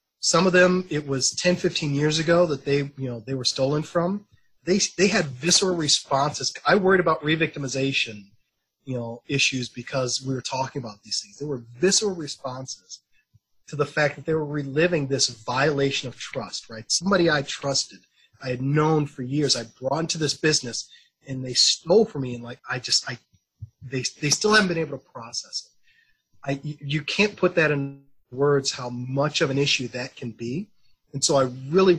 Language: English